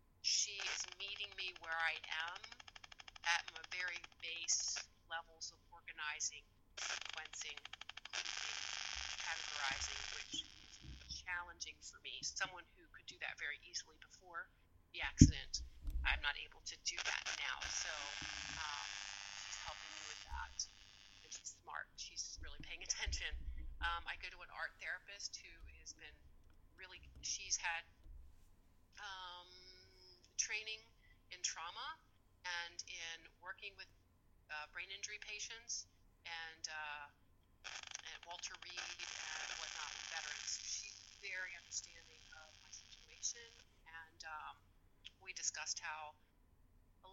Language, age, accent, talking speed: English, 30-49, American, 125 wpm